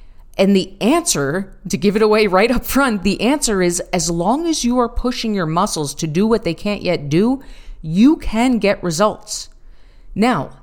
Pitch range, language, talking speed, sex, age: 150-205 Hz, English, 185 wpm, female, 30-49